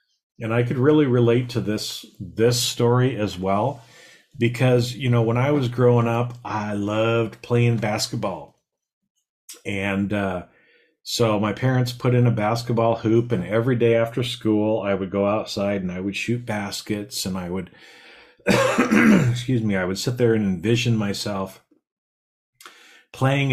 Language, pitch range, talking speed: English, 100-120 Hz, 155 wpm